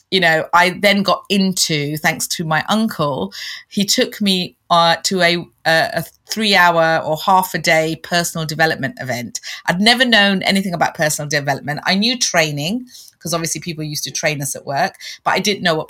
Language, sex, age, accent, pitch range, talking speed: English, female, 30-49, British, 150-180 Hz, 190 wpm